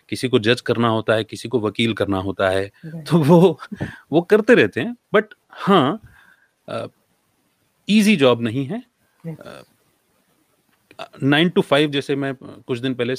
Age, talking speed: 30-49, 140 wpm